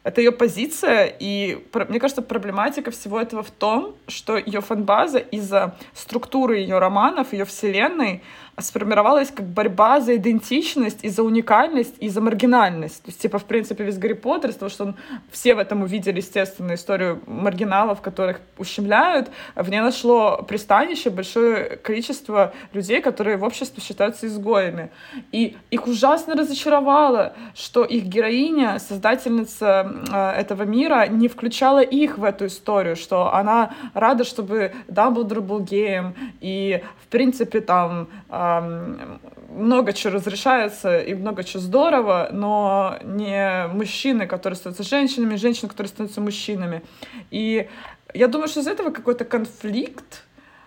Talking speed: 135 wpm